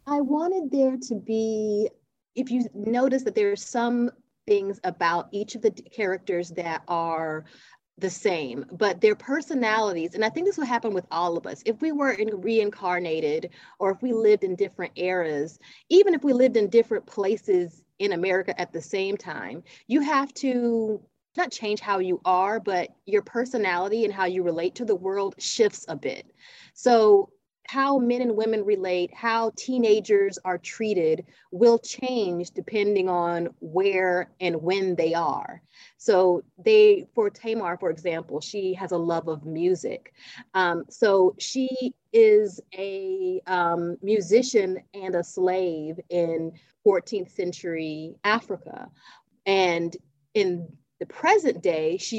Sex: female